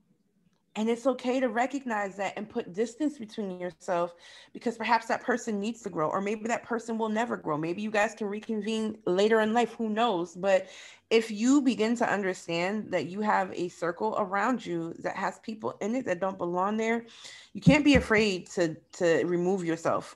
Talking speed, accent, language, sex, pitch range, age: 195 wpm, American, English, female, 180-230 Hz, 30-49